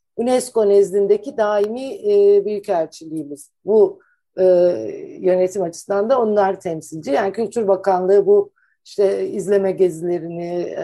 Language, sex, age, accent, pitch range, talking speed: Turkish, female, 60-79, native, 185-265 Hz, 95 wpm